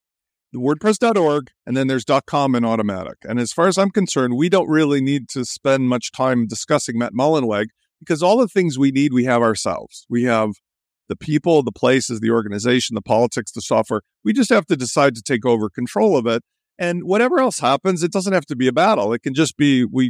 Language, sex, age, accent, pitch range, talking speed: English, male, 50-69, American, 125-195 Hz, 215 wpm